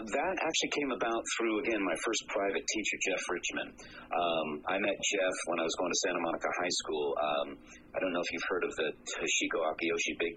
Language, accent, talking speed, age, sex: English, American, 215 wpm, 40-59, male